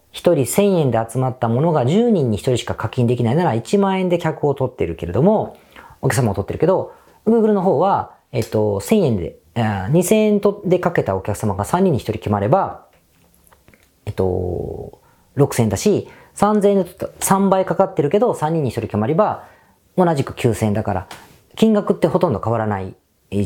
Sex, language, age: female, Japanese, 40-59